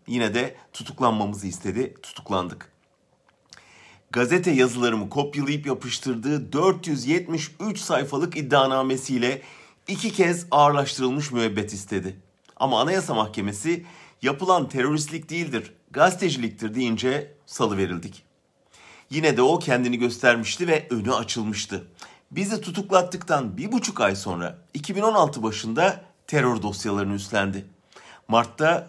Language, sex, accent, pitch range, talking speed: German, male, Turkish, 105-150 Hz, 95 wpm